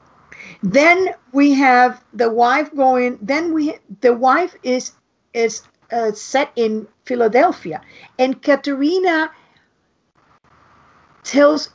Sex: female